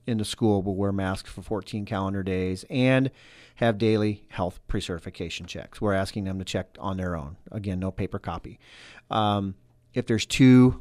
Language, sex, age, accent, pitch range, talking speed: English, male, 40-59, American, 105-125 Hz, 180 wpm